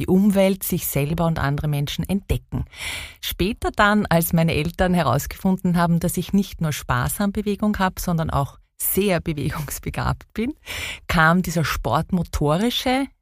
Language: German